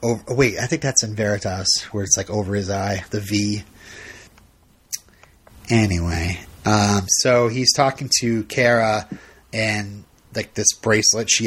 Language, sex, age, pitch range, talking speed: English, male, 30-49, 110-165 Hz, 140 wpm